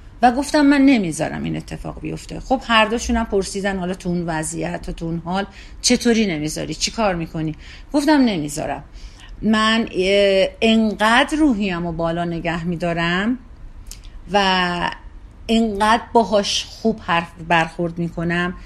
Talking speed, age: 120 wpm, 40-59